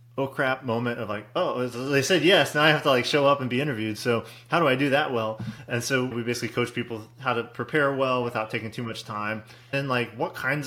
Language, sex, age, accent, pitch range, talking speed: English, male, 30-49, American, 110-130 Hz, 255 wpm